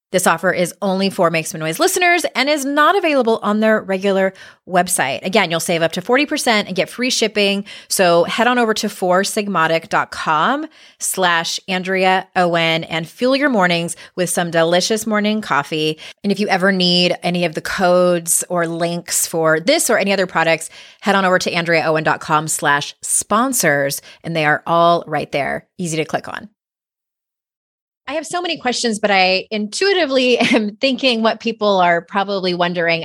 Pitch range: 165-215 Hz